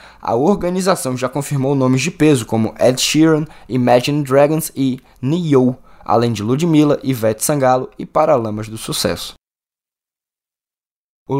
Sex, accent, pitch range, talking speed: male, Brazilian, 115-155 Hz, 125 wpm